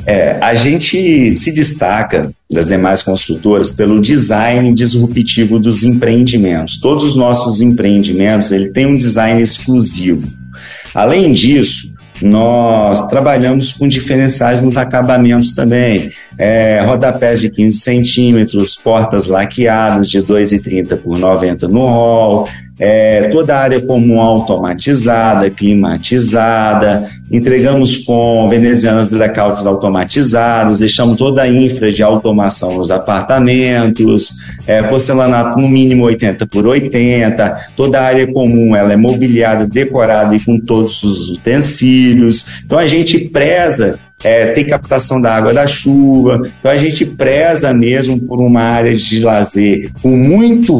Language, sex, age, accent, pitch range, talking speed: Portuguese, male, 40-59, Brazilian, 105-125 Hz, 120 wpm